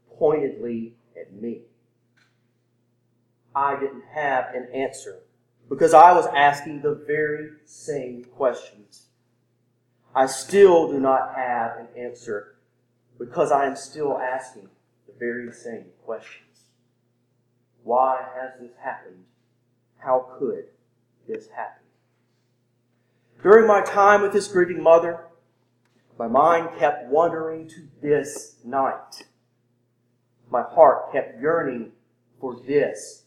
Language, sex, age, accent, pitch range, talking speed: English, male, 40-59, American, 120-145 Hz, 110 wpm